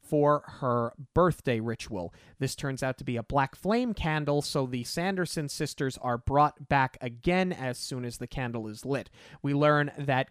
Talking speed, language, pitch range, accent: 180 wpm, English, 130-170 Hz, American